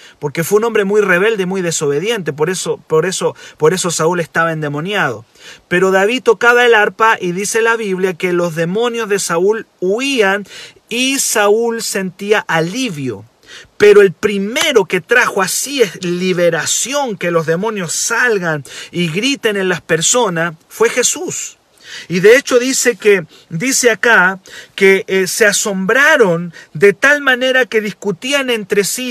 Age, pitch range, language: 40-59, 180-240 Hz, Spanish